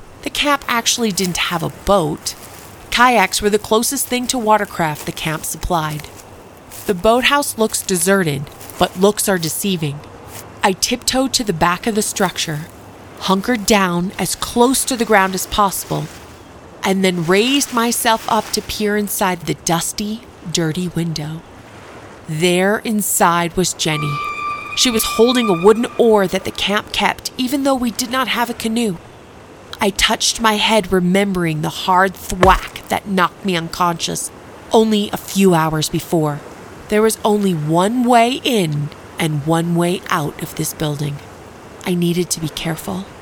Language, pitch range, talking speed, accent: English, 165-225 Hz, 155 wpm, American